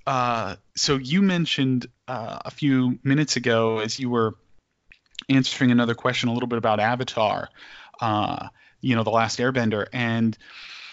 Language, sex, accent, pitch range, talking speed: English, male, American, 115-130 Hz, 150 wpm